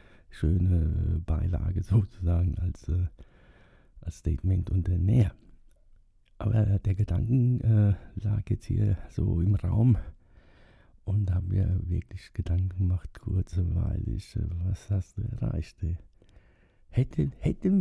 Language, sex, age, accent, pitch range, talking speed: German, male, 60-79, German, 90-105 Hz, 120 wpm